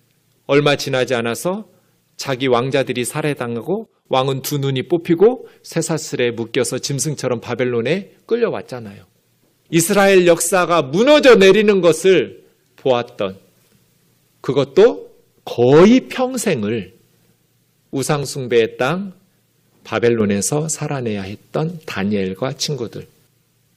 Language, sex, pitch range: Korean, male, 130-200 Hz